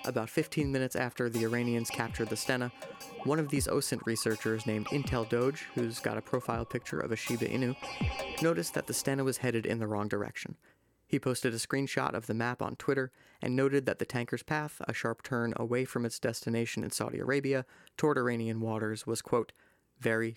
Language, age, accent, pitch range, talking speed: English, 30-49, American, 115-130 Hz, 195 wpm